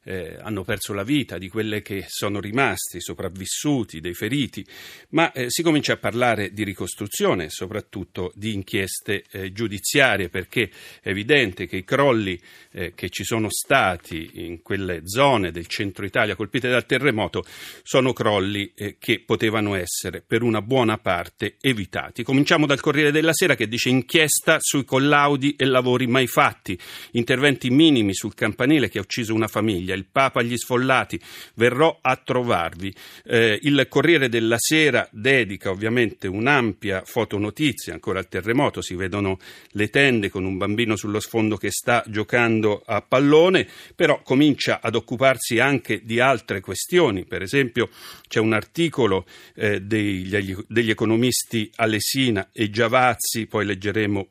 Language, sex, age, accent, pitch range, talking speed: Italian, male, 40-59, native, 100-130 Hz, 150 wpm